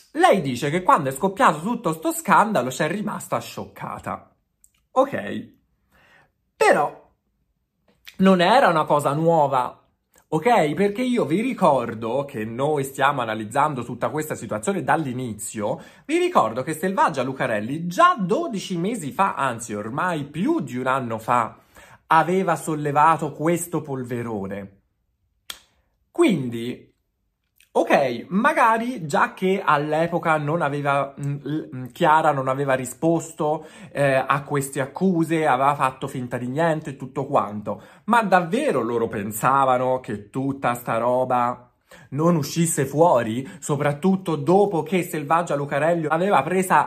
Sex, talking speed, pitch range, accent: male, 125 wpm, 130-180 Hz, native